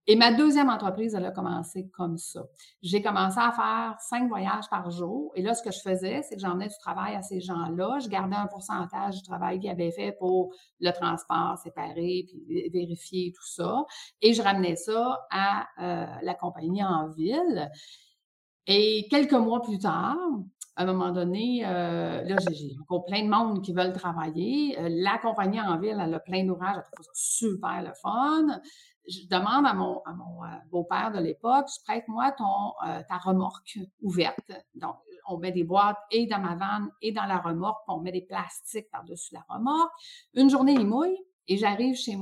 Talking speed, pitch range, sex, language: 190 wpm, 175-235 Hz, female, French